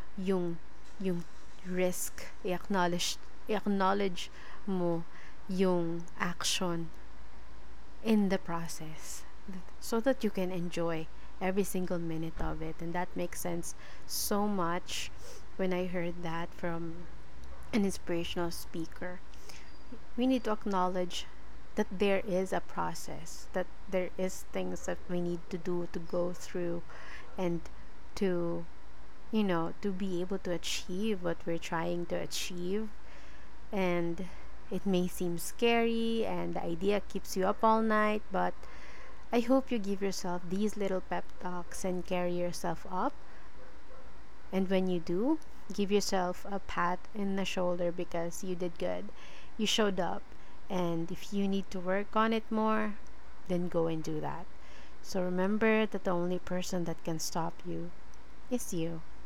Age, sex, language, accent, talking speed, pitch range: 30-49, female, Filipino, native, 145 wpm, 170-195 Hz